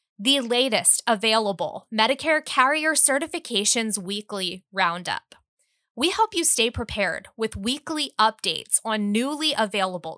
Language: English